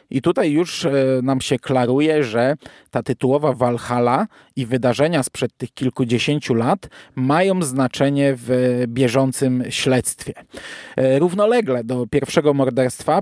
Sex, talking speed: male, 115 wpm